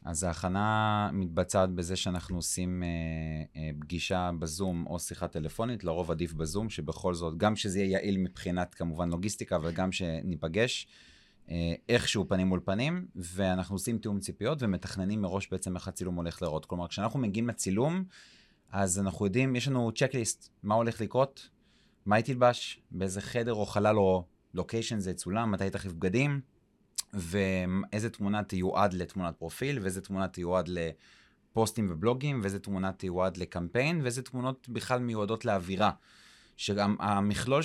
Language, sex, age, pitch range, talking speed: Hebrew, male, 30-49, 90-115 Hz, 145 wpm